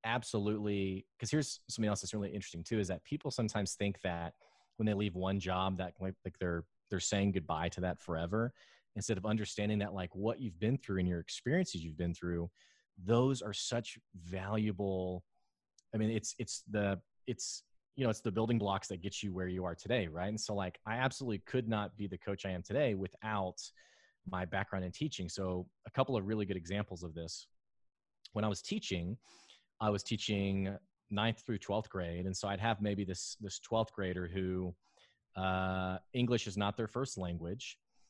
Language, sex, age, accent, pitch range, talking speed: English, male, 30-49, American, 95-110 Hz, 195 wpm